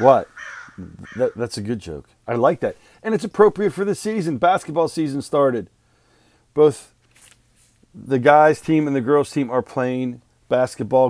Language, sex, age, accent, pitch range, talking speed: English, male, 40-59, American, 115-135 Hz, 155 wpm